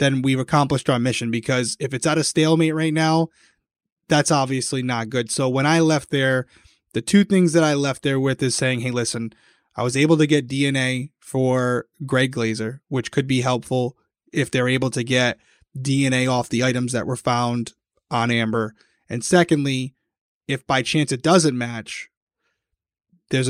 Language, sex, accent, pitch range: English, male, American, 125-150 Hz